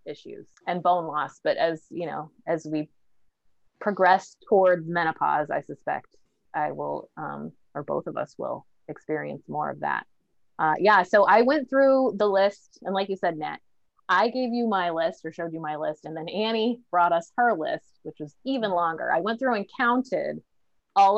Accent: American